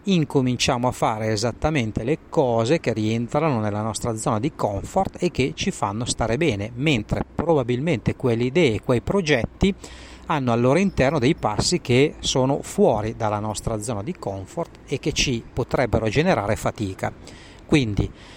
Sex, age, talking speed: male, 40-59, 155 wpm